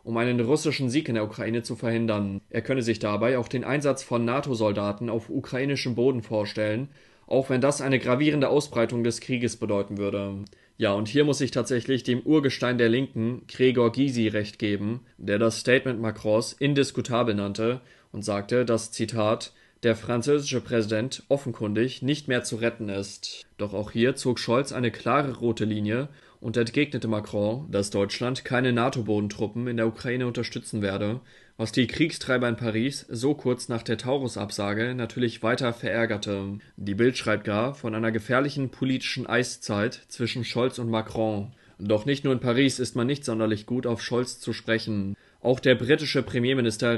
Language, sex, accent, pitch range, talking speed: German, male, German, 110-130 Hz, 165 wpm